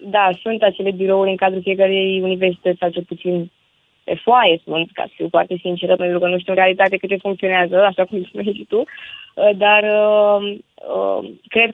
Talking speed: 165 wpm